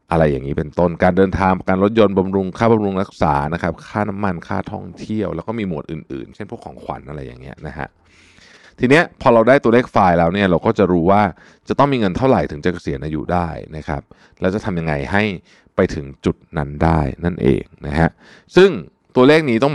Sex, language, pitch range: male, Thai, 85-115 Hz